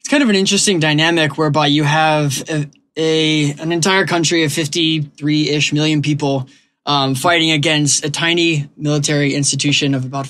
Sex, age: male, 20-39